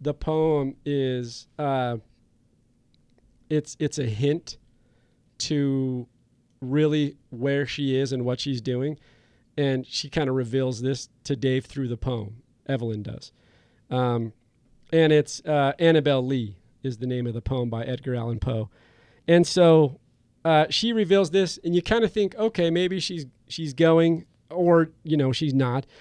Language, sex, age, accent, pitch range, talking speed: English, male, 40-59, American, 125-155 Hz, 155 wpm